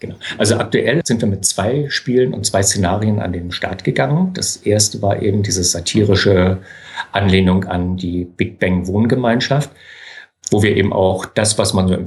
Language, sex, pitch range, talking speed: German, male, 95-115 Hz, 180 wpm